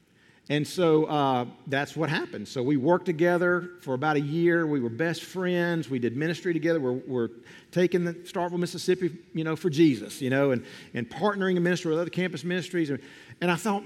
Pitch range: 140-185 Hz